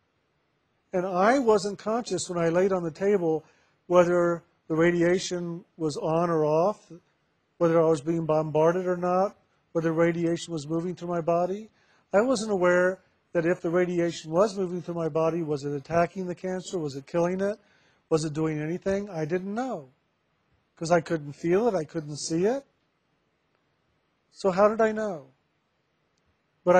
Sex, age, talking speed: male, 50-69, 165 wpm